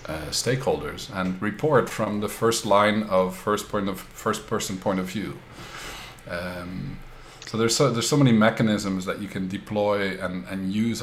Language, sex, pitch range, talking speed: English, male, 95-115 Hz, 175 wpm